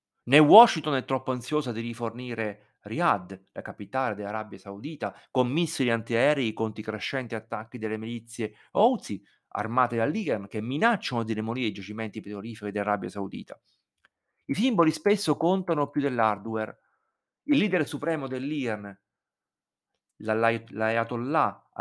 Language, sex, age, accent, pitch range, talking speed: Italian, male, 50-69, native, 110-150 Hz, 120 wpm